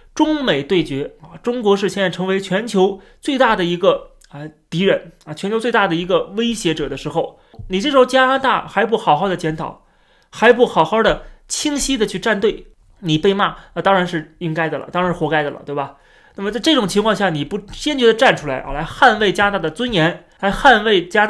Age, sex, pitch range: 30-49, male, 165-225 Hz